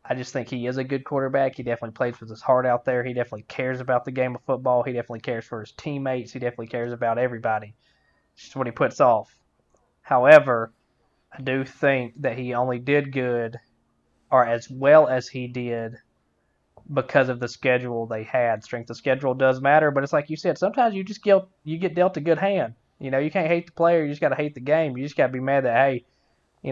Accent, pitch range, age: American, 120-145 Hz, 20-39